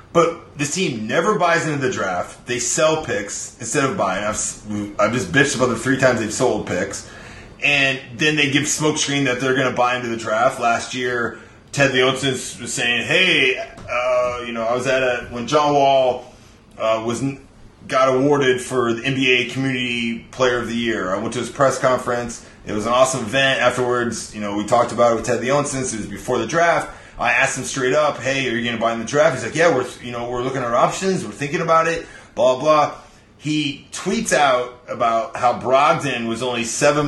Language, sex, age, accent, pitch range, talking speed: English, male, 30-49, American, 120-145 Hz, 215 wpm